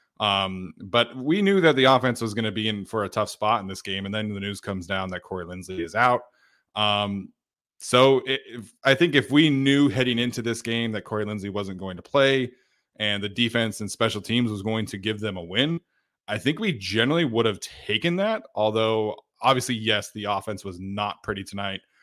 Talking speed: 210 wpm